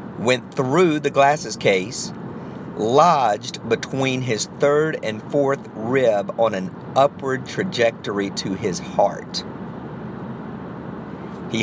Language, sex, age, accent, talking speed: English, male, 50-69, American, 105 wpm